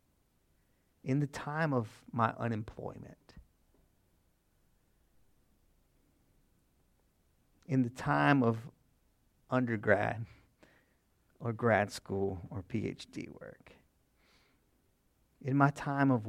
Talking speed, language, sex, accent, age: 75 wpm, English, male, American, 50-69